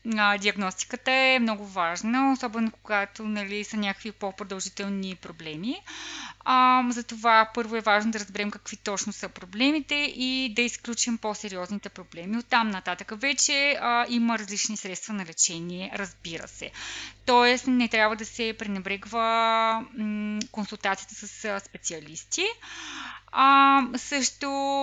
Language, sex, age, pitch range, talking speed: Bulgarian, female, 20-39, 205-250 Hz, 120 wpm